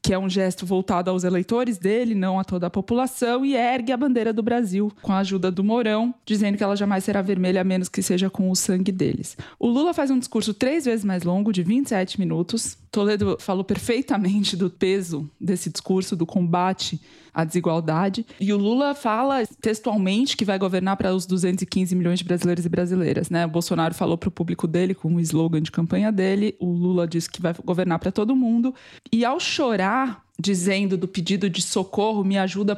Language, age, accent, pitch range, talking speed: Portuguese, 20-39, Brazilian, 185-220 Hz, 200 wpm